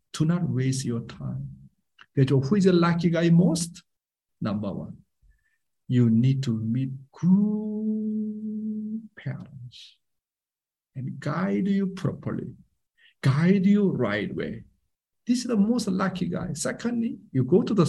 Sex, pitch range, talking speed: male, 135-210 Hz, 130 wpm